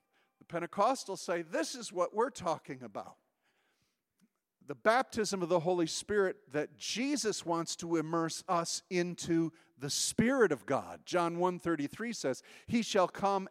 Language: English